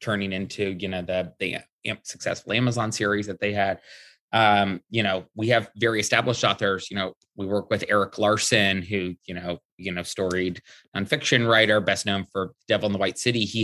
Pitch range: 100-110 Hz